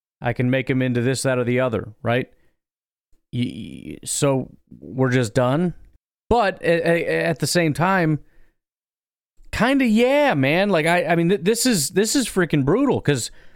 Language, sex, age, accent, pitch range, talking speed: English, male, 30-49, American, 115-150 Hz, 150 wpm